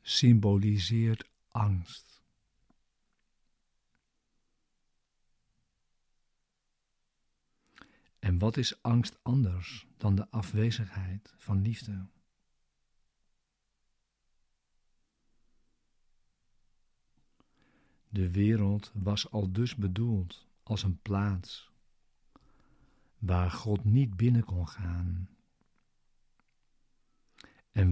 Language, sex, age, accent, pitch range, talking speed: Dutch, male, 50-69, Dutch, 95-115 Hz, 60 wpm